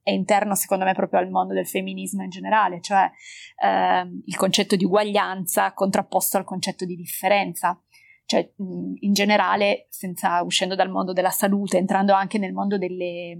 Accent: native